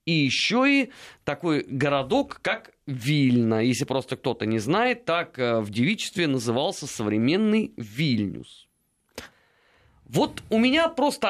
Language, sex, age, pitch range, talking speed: Russian, male, 30-49, 125-205 Hz, 115 wpm